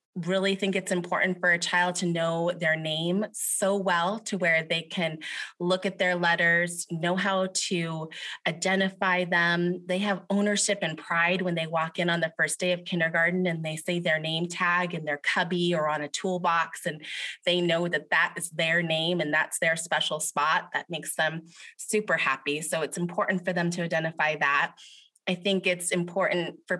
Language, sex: English, female